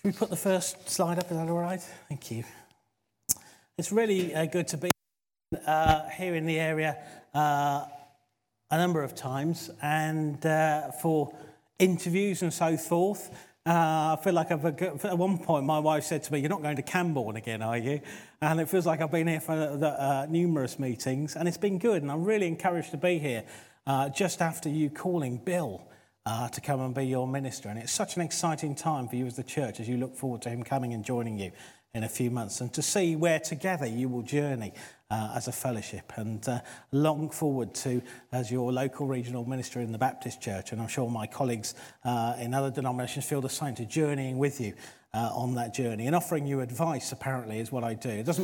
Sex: male